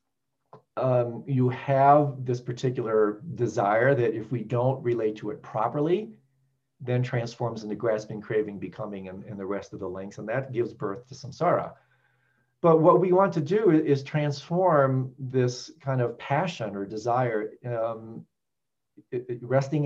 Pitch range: 115-140 Hz